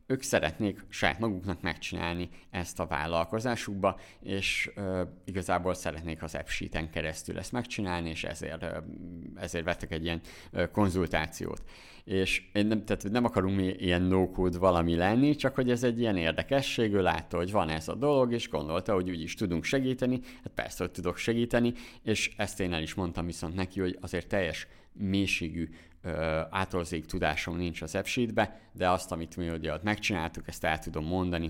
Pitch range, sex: 85-100 Hz, male